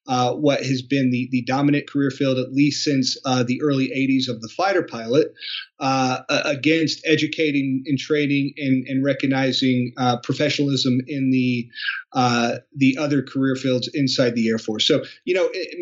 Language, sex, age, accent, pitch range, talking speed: English, male, 30-49, American, 130-150 Hz, 175 wpm